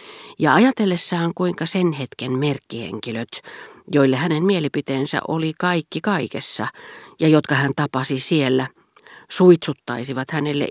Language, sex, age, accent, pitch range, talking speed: Finnish, female, 40-59, native, 125-170 Hz, 105 wpm